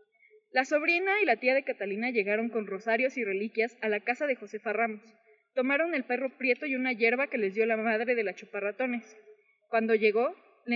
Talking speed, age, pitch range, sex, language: 200 wpm, 20-39, 225-275 Hz, female, Spanish